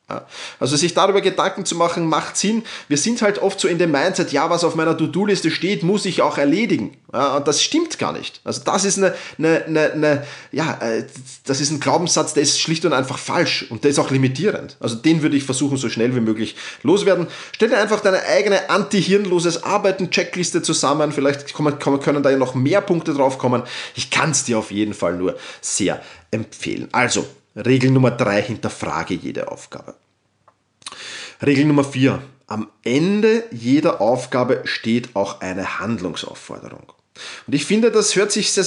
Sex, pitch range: male, 135-190 Hz